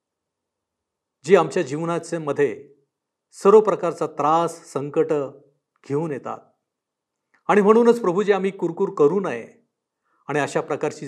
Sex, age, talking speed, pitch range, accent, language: male, 50-69, 110 wpm, 140-200 Hz, native, Marathi